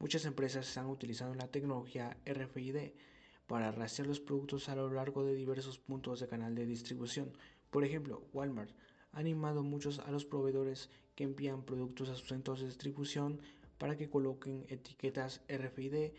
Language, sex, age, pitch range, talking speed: Spanish, male, 20-39, 125-140 Hz, 160 wpm